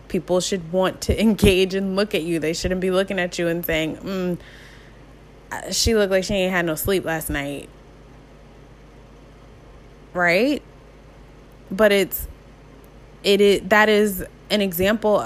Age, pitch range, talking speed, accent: 20-39, 165-200 Hz, 145 wpm, American